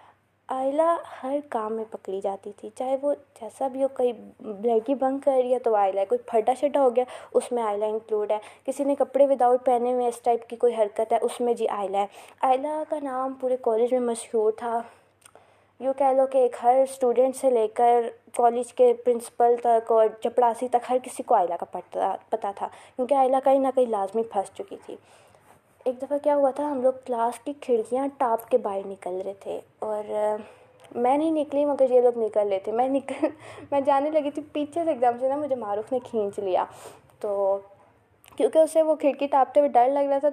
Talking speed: 180 wpm